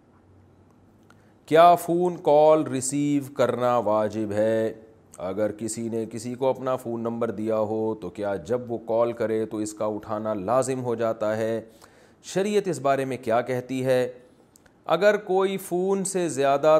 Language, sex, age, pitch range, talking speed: Urdu, male, 40-59, 110-150 Hz, 155 wpm